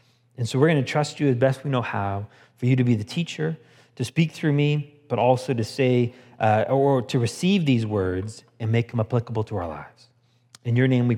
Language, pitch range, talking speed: English, 125-185 Hz, 230 wpm